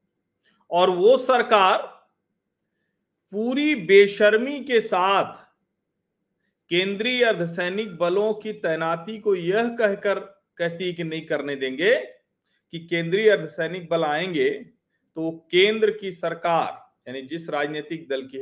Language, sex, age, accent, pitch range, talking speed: Hindi, male, 40-59, native, 160-225 Hz, 110 wpm